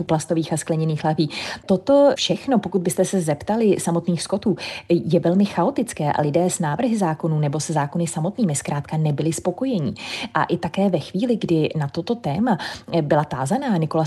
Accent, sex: native, female